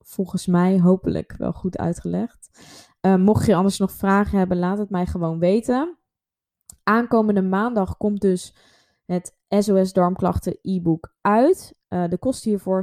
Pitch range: 175-195 Hz